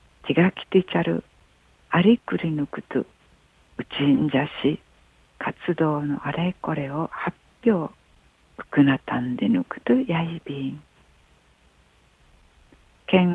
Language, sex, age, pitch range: Japanese, female, 60-79, 145-195 Hz